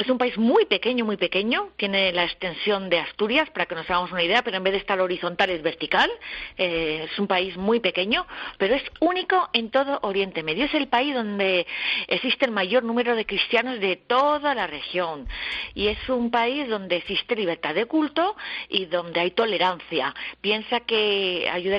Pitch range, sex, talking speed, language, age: 180-235 Hz, female, 190 wpm, Spanish, 40-59